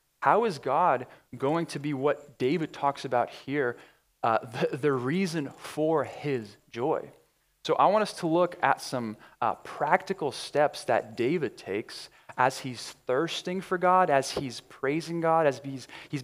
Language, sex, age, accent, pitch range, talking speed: English, male, 20-39, American, 125-170 Hz, 165 wpm